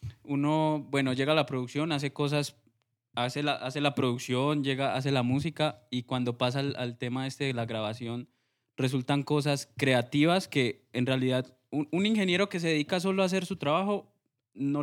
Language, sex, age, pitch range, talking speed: Spanish, male, 10-29, 125-150 Hz, 180 wpm